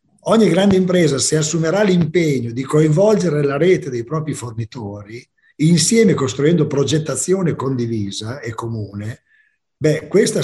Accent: native